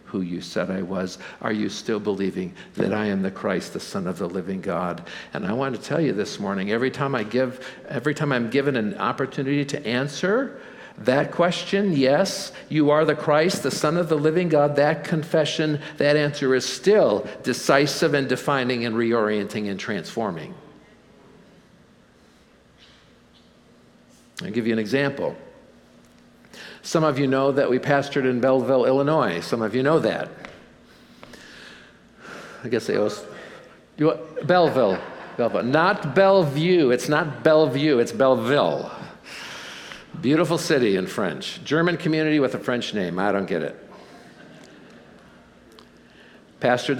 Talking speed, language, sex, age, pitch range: 145 wpm, English, male, 60-79, 120-155 Hz